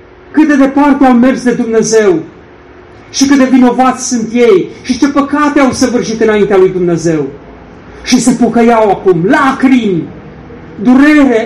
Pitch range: 185-255 Hz